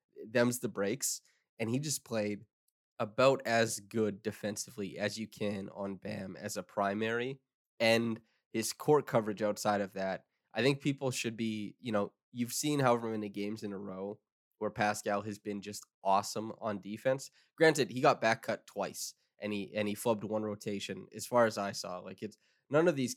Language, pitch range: English, 100-120 Hz